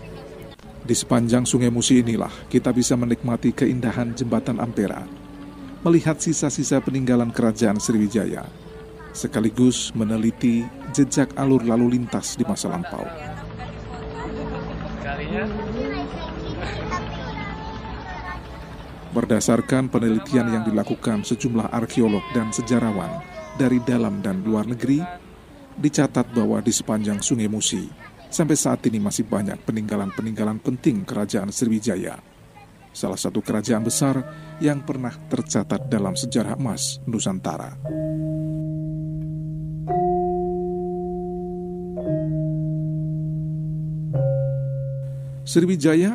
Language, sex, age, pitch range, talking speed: Indonesian, male, 40-59, 115-155 Hz, 85 wpm